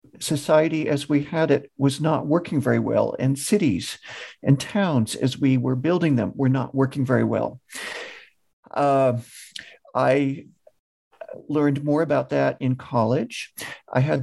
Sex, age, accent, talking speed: male, 50-69, American, 145 wpm